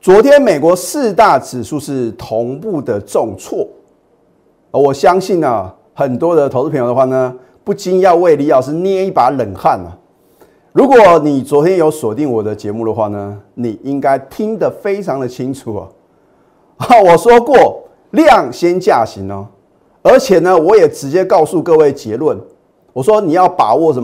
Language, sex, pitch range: Chinese, male, 110-175 Hz